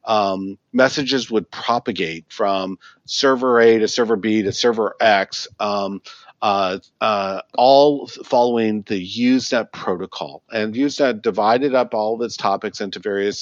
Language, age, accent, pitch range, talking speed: English, 50-69, American, 100-140 Hz, 140 wpm